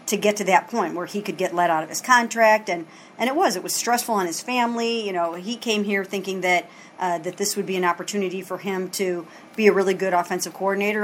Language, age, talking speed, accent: English, 40-59, 255 wpm, American